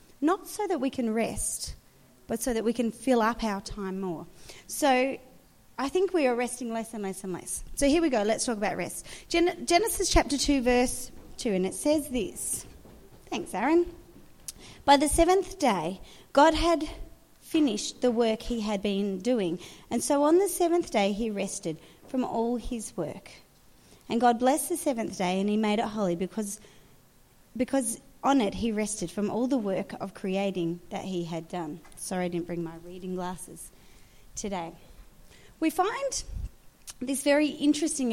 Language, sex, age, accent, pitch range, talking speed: English, female, 30-49, Australian, 195-285 Hz, 175 wpm